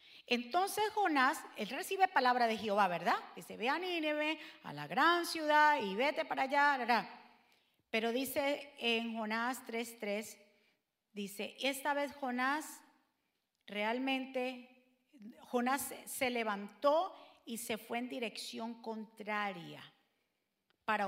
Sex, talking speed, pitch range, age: female, 115 wpm, 235-340 Hz, 40-59